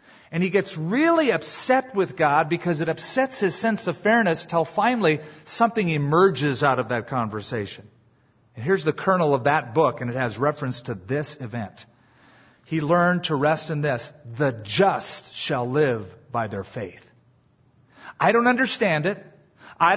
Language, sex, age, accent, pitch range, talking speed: English, male, 40-59, American, 120-175 Hz, 160 wpm